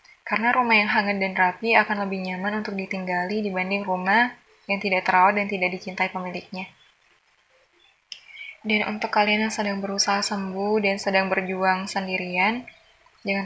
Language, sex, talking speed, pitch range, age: English, female, 145 wpm, 185-215 Hz, 10-29